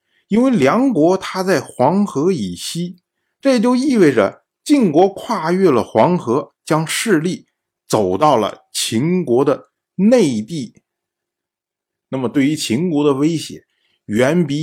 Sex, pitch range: male, 145-225 Hz